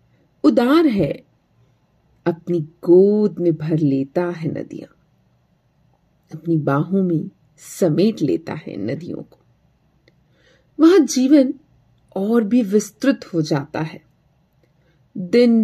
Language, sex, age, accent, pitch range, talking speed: Hindi, female, 40-59, native, 160-240 Hz, 100 wpm